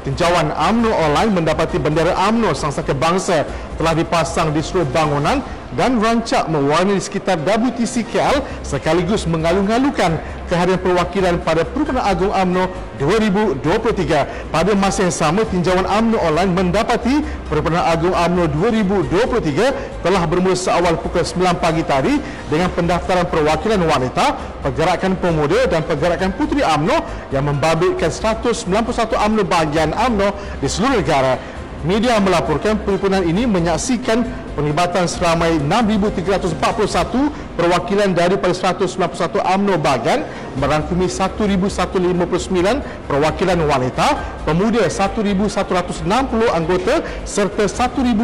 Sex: male